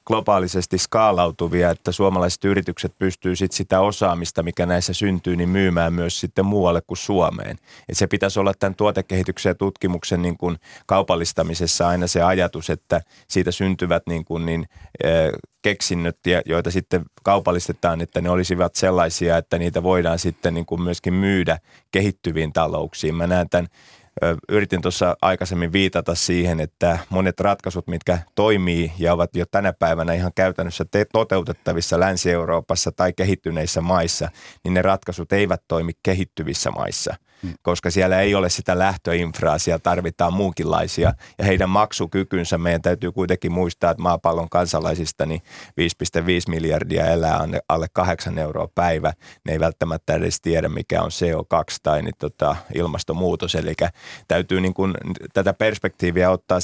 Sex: male